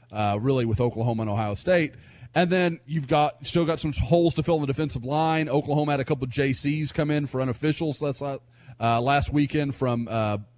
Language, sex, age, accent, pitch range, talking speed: English, male, 30-49, American, 125-170 Hz, 210 wpm